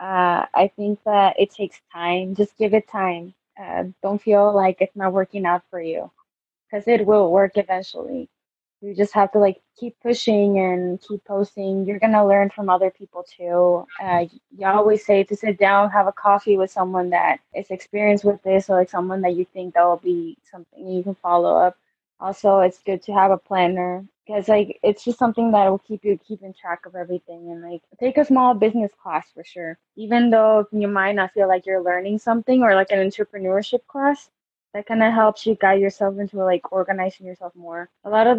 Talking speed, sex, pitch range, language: 210 wpm, female, 180-210 Hz, English